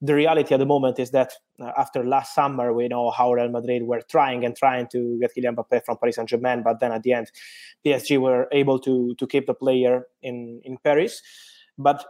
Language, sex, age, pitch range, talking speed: English, male, 20-39, 120-145 Hz, 215 wpm